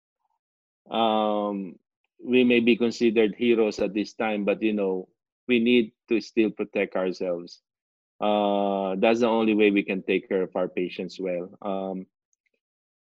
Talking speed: 145 wpm